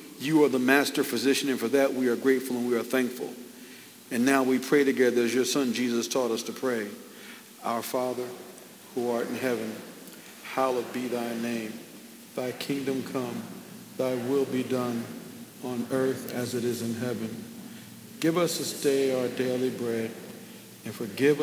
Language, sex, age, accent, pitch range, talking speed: English, male, 50-69, American, 120-165 Hz, 170 wpm